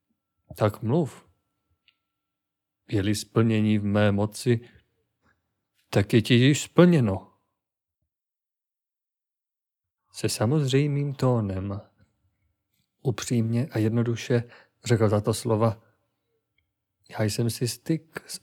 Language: Czech